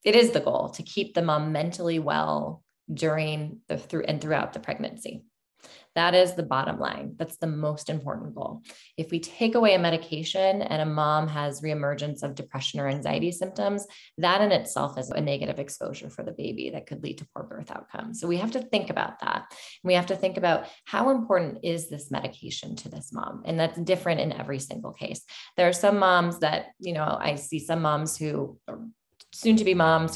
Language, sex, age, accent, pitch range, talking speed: English, female, 20-39, American, 155-185 Hz, 205 wpm